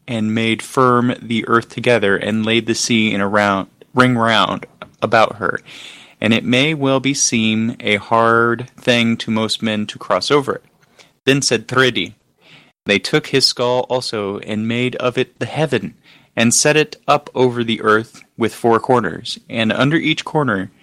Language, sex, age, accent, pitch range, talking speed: English, male, 30-49, American, 110-125 Hz, 175 wpm